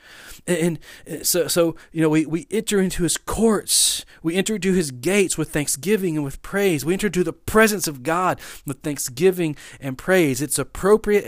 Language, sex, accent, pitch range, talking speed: English, male, American, 140-200 Hz, 180 wpm